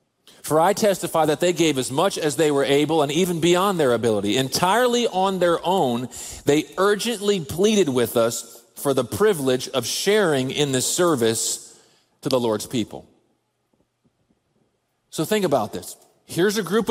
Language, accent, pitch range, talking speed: English, American, 130-190 Hz, 160 wpm